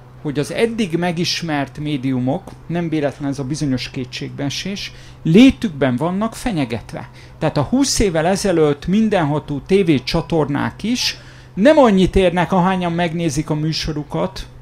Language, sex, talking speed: Hungarian, male, 120 wpm